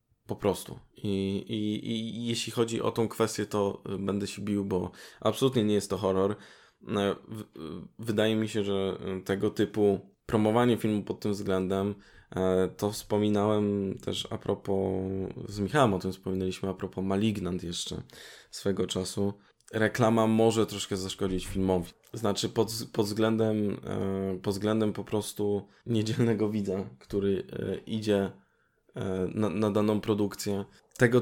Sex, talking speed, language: male, 135 wpm, Polish